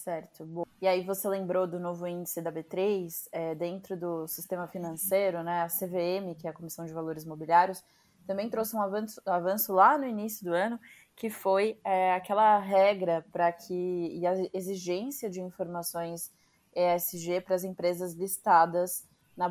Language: Portuguese